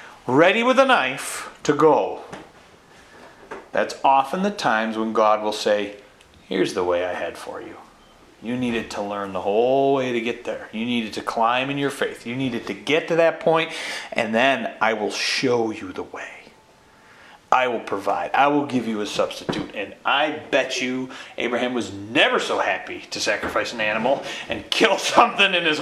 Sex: male